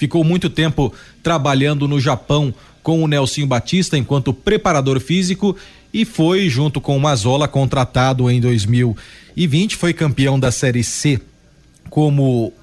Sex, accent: male, Brazilian